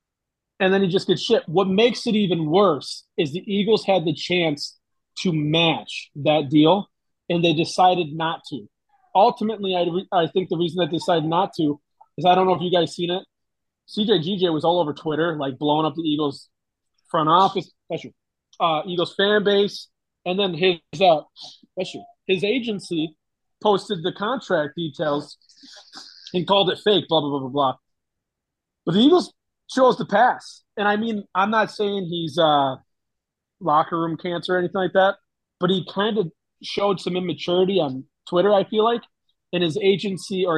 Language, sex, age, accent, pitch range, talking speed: English, male, 30-49, American, 155-195 Hz, 175 wpm